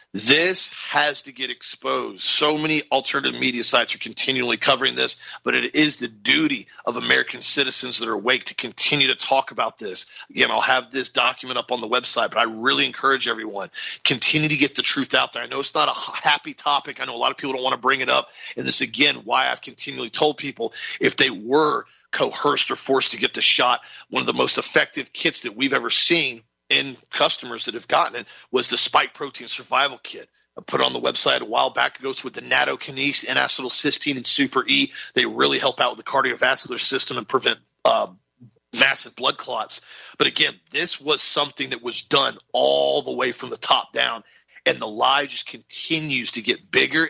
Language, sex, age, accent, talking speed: English, male, 40-59, American, 215 wpm